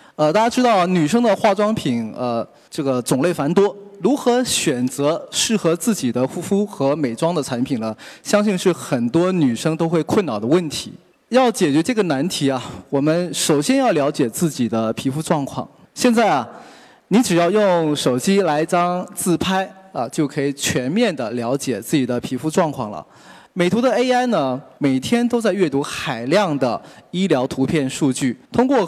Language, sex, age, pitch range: Chinese, male, 20-39, 140-205 Hz